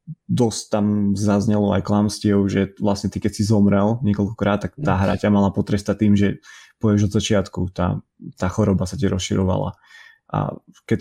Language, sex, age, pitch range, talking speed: Slovak, male, 20-39, 95-105 Hz, 170 wpm